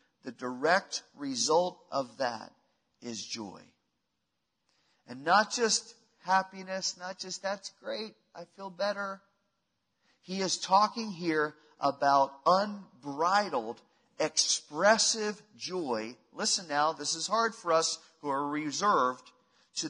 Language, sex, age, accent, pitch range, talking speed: English, male, 40-59, American, 165-230 Hz, 110 wpm